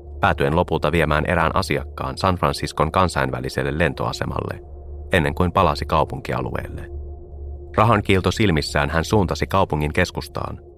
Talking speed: 110 wpm